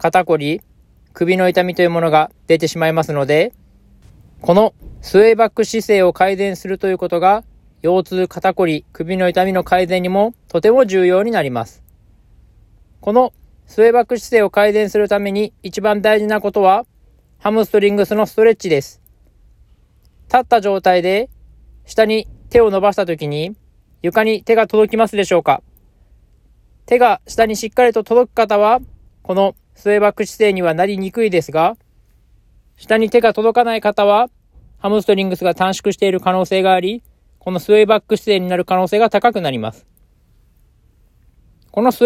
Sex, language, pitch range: male, Japanese, 170-220 Hz